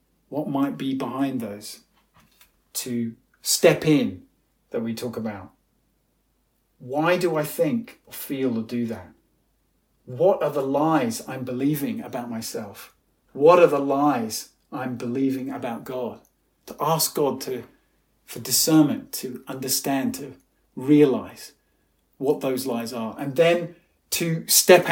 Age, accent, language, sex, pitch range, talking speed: 40-59, British, English, male, 135-170 Hz, 130 wpm